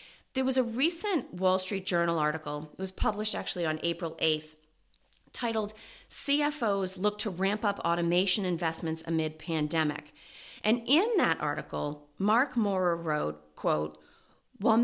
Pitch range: 165-225 Hz